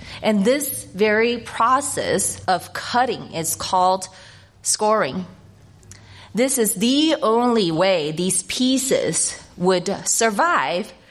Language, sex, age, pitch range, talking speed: English, female, 30-49, 180-230 Hz, 95 wpm